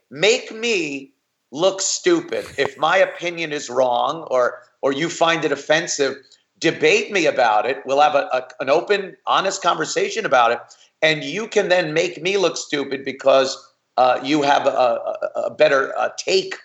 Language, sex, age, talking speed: English, male, 40-59, 170 wpm